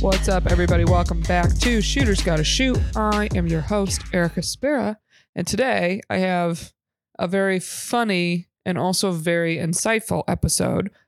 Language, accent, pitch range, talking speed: English, American, 160-190 Hz, 150 wpm